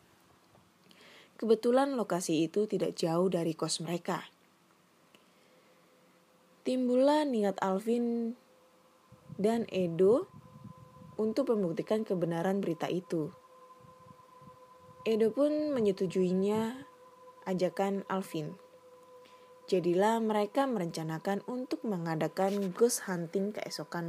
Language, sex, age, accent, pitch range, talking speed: Indonesian, female, 20-39, native, 175-255 Hz, 75 wpm